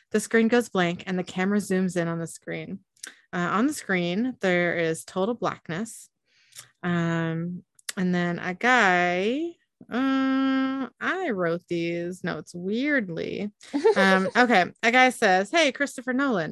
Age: 30-49